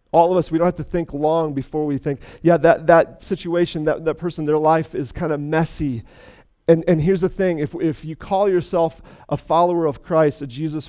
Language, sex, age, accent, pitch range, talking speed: English, male, 40-59, American, 135-165 Hz, 225 wpm